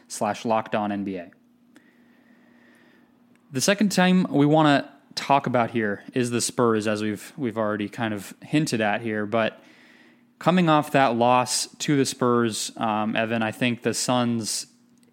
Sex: male